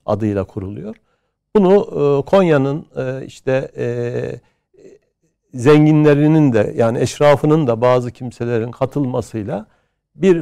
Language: Turkish